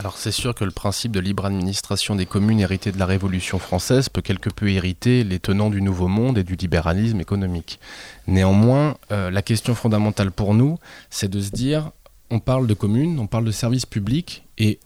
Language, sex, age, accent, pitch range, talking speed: French, male, 20-39, French, 100-120 Hz, 200 wpm